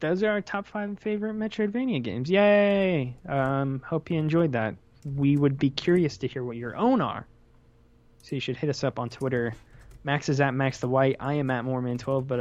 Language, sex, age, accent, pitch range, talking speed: English, male, 20-39, American, 120-160 Hz, 210 wpm